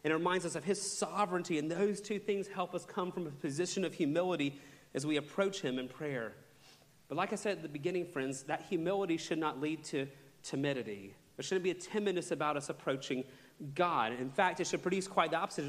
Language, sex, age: English, male, 40-59